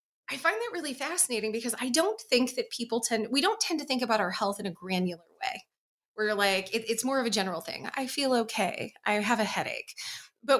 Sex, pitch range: female, 195-265 Hz